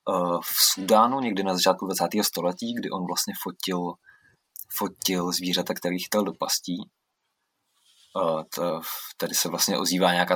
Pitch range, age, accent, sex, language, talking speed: 90-100 Hz, 20-39, native, male, Czech, 125 wpm